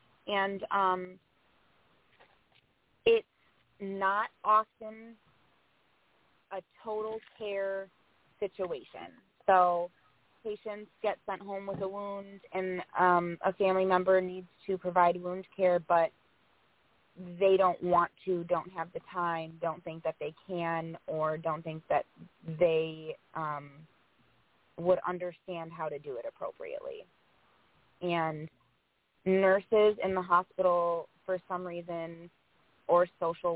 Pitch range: 160-190 Hz